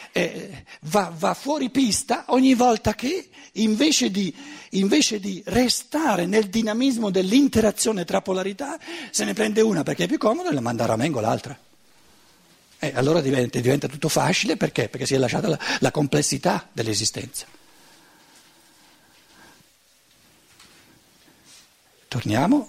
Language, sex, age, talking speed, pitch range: Italian, male, 60-79, 125 wpm, 145-215 Hz